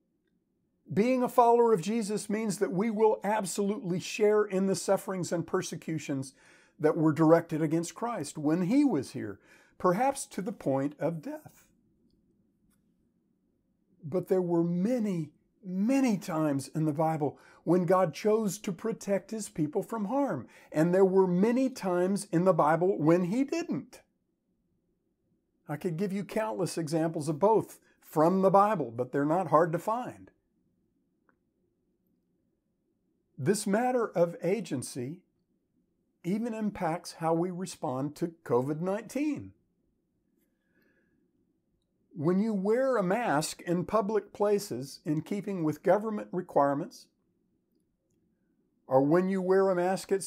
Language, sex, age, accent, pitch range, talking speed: English, male, 50-69, American, 160-210 Hz, 130 wpm